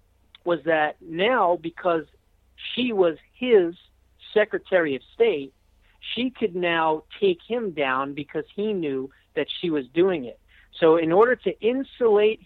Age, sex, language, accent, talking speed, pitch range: 50-69, male, English, American, 140 wpm, 150-195 Hz